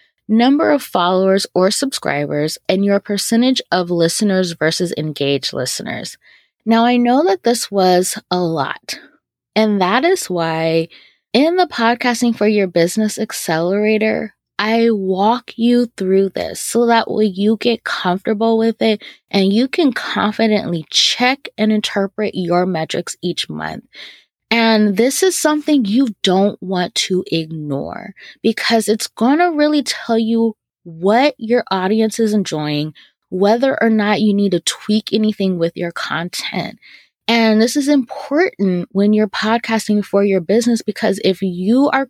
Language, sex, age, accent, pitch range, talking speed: English, female, 20-39, American, 185-235 Hz, 145 wpm